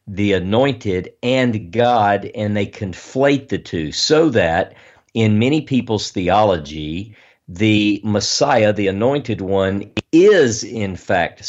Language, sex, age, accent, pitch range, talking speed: English, male, 50-69, American, 100-125 Hz, 120 wpm